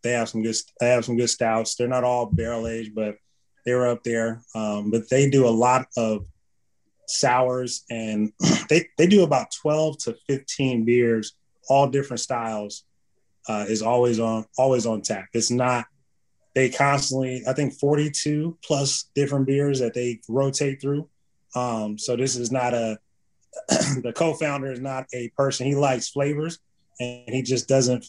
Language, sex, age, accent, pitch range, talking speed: English, male, 20-39, American, 115-140 Hz, 175 wpm